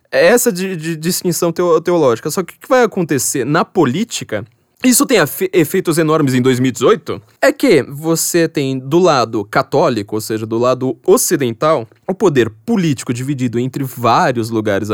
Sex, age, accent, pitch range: male, 20-39, Brazilian, 120-175 Hz